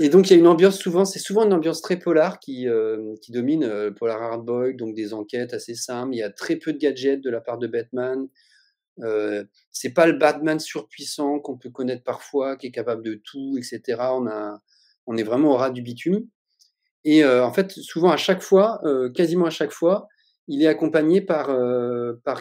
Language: French